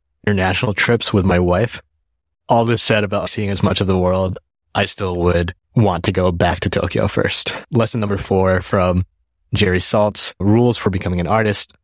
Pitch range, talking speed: 85-105 Hz, 180 wpm